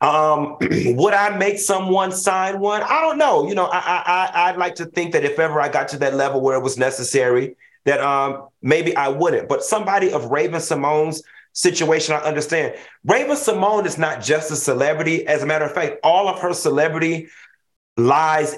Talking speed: 195 wpm